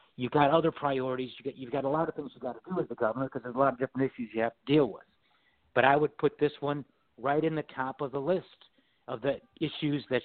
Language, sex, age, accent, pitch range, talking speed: English, male, 60-79, American, 130-155 Hz, 270 wpm